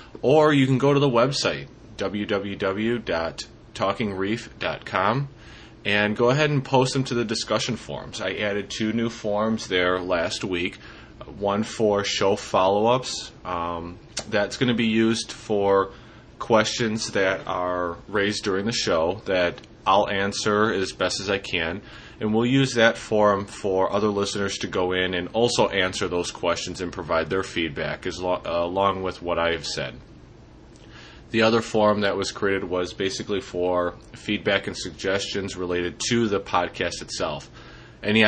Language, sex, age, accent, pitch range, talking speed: English, male, 20-39, American, 95-110 Hz, 150 wpm